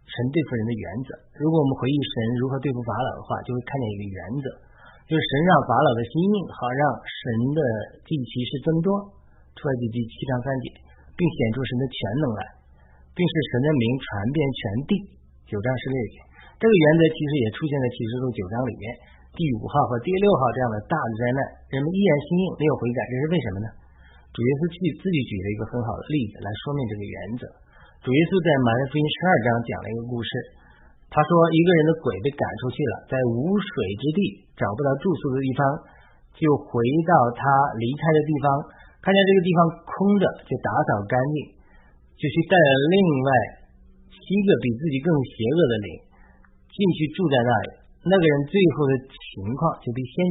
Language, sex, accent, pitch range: Chinese, male, native, 115-155 Hz